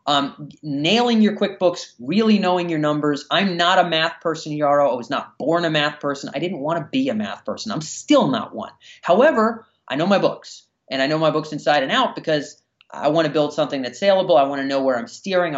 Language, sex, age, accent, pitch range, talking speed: English, male, 30-49, American, 145-210 Hz, 235 wpm